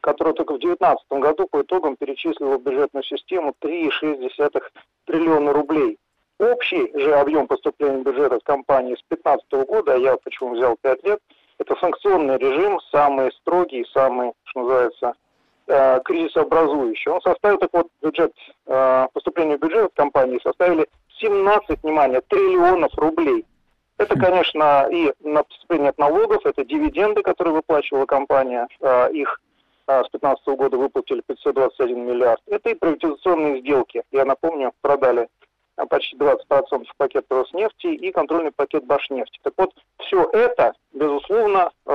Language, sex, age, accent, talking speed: Russian, male, 40-59, native, 135 wpm